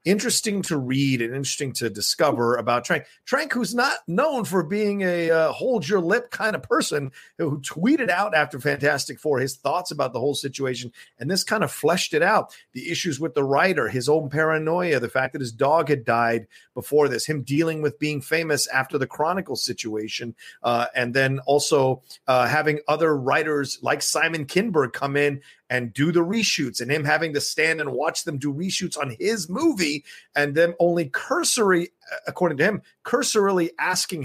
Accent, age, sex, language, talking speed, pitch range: American, 40-59, male, English, 185 wpm, 130-165 Hz